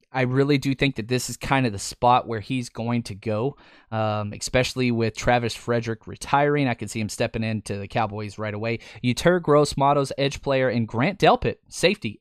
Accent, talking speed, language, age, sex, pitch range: American, 200 wpm, English, 20-39, male, 115-145 Hz